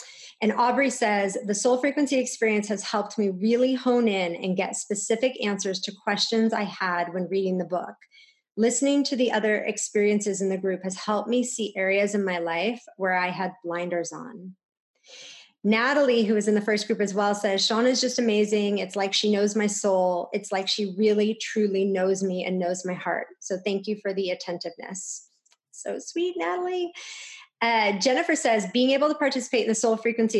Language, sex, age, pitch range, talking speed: English, female, 30-49, 190-230 Hz, 190 wpm